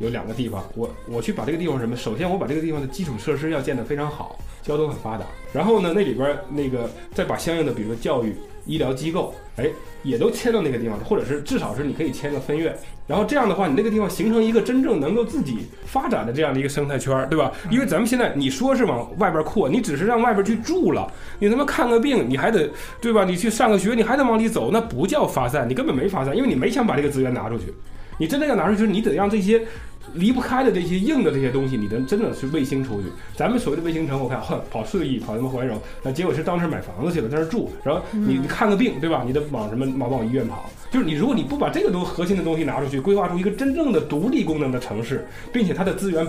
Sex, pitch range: male, 135-220 Hz